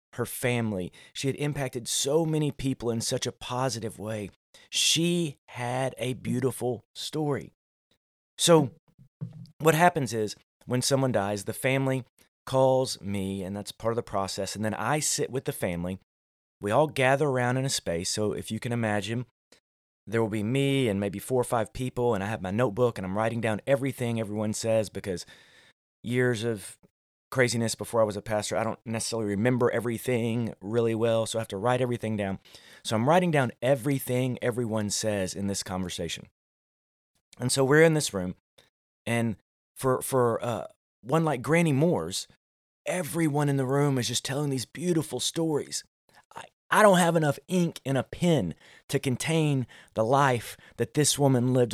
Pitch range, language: 110-140 Hz, English